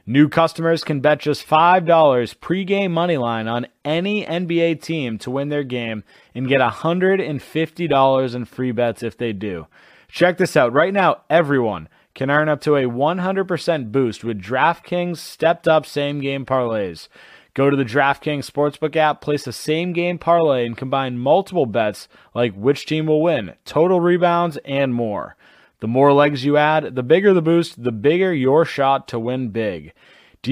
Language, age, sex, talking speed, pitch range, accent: English, 30-49, male, 170 wpm, 125-165 Hz, American